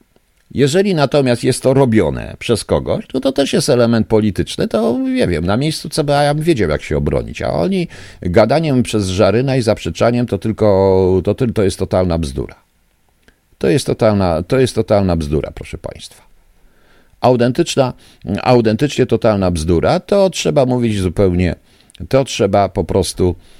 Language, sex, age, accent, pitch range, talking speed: Polish, male, 50-69, native, 90-150 Hz, 150 wpm